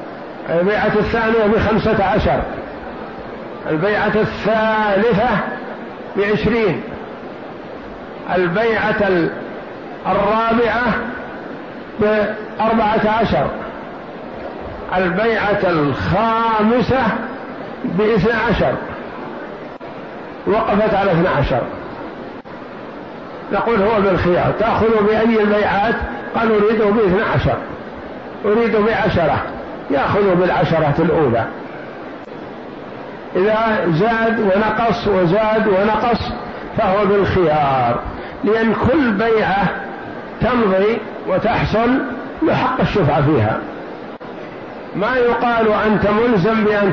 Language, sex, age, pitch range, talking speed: Arabic, male, 50-69, 195-225 Hz, 70 wpm